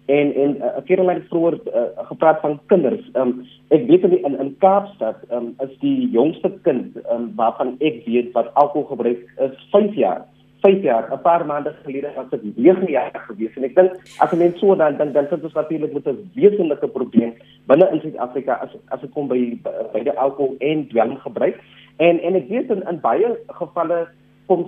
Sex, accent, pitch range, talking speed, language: male, Indian, 130-175 Hz, 195 wpm, Dutch